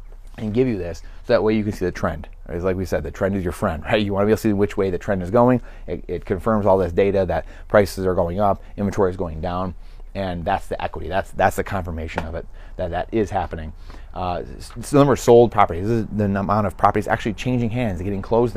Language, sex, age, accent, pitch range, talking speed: English, male, 30-49, American, 95-115 Hz, 265 wpm